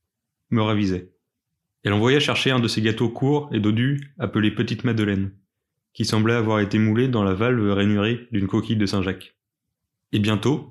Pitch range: 105-120 Hz